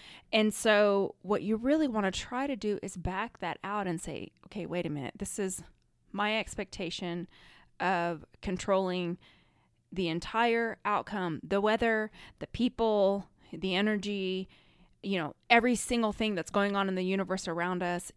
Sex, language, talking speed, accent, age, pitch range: female, English, 160 wpm, American, 20-39, 180-215 Hz